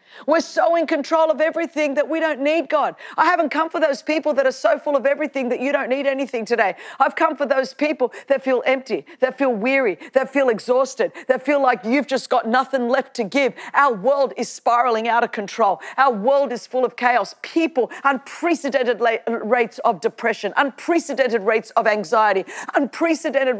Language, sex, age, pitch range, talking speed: English, female, 40-59, 235-290 Hz, 195 wpm